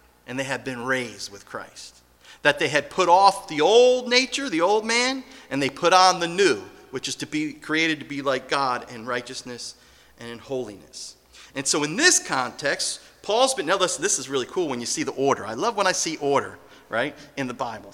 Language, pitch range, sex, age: English, 125-185 Hz, male, 40-59